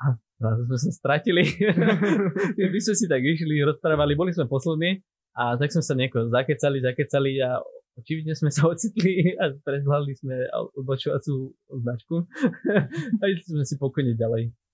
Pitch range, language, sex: 115-145 Hz, Slovak, male